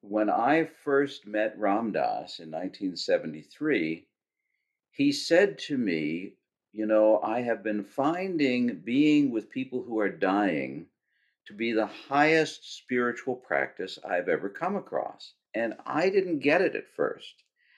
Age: 50-69